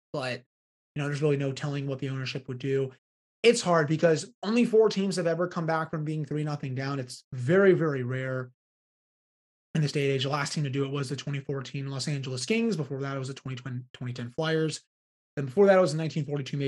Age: 30-49